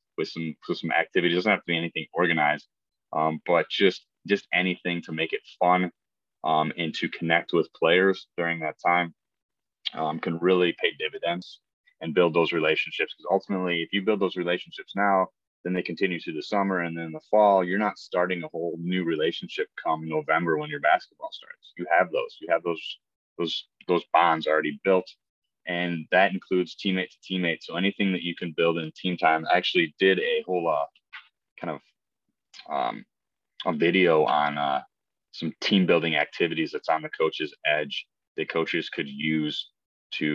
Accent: American